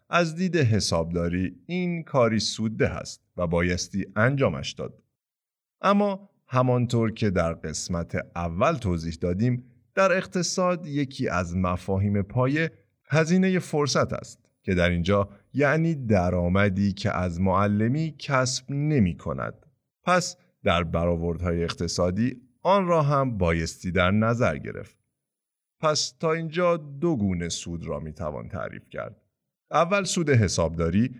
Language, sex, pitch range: Persian, male, 90-140 Hz